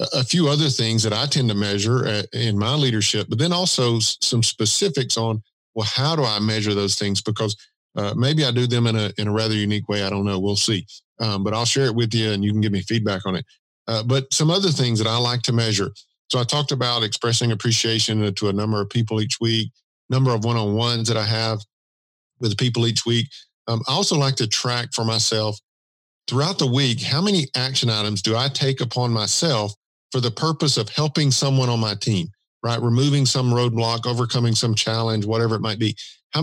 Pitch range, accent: 105-130 Hz, American